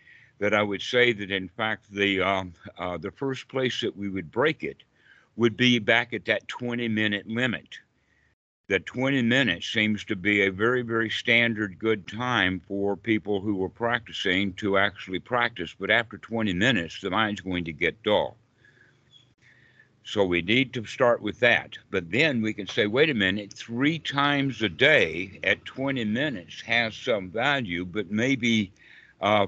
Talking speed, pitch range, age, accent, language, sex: 170 wpm, 100-125 Hz, 60-79, American, English, male